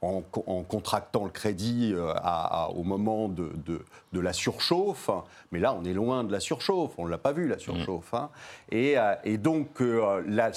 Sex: male